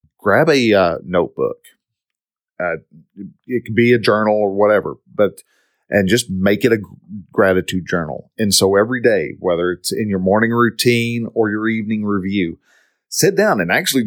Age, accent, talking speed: 40-59, American, 160 wpm